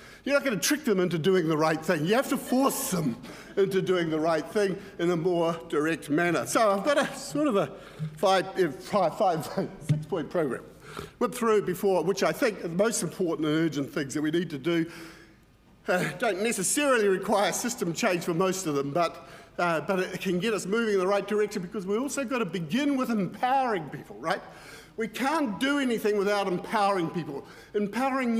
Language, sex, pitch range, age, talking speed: English, male, 185-245 Hz, 50-69, 205 wpm